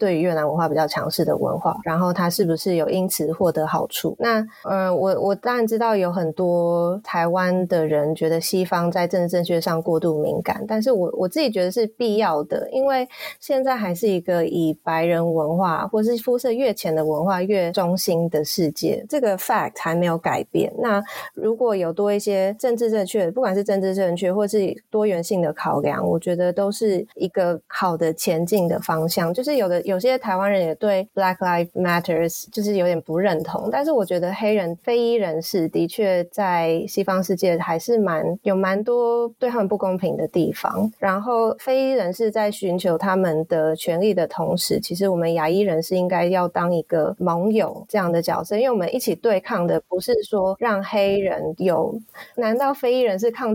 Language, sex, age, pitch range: Chinese, female, 20-39, 170-215 Hz